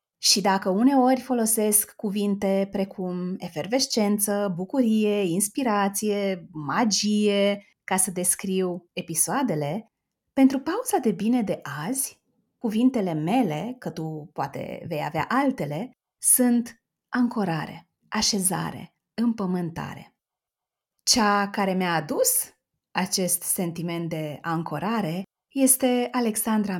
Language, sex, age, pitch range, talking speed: Romanian, female, 30-49, 185-245 Hz, 95 wpm